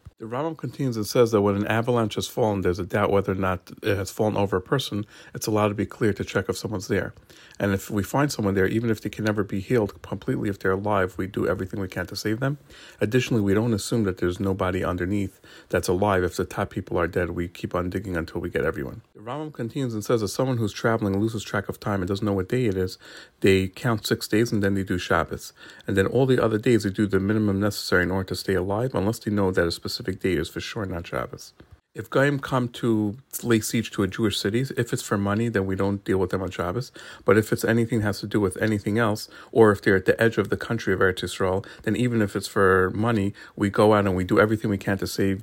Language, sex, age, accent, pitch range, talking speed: English, male, 40-59, American, 95-115 Hz, 265 wpm